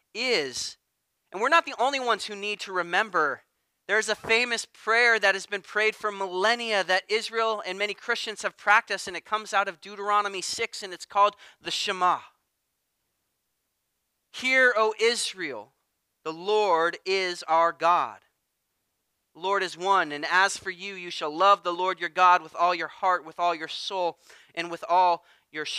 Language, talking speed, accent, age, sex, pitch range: English, 175 wpm, American, 30-49, male, 175-215 Hz